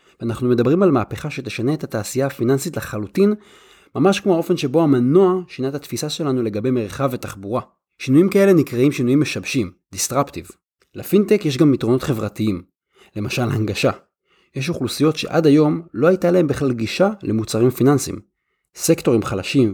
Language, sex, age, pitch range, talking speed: Hebrew, male, 30-49, 105-145 Hz, 145 wpm